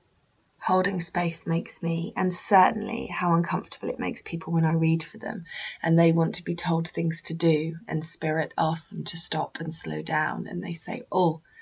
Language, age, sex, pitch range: English, 20-39, female, 165-195 Hz